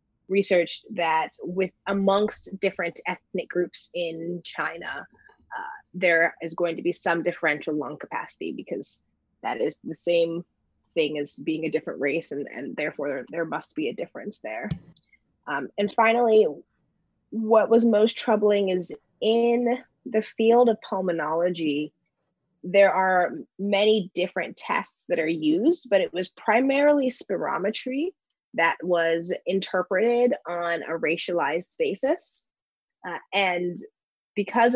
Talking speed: 130 wpm